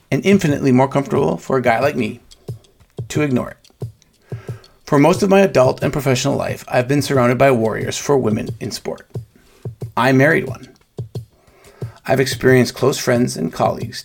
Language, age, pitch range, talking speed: English, 40-59, 125-140 Hz, 160 wpm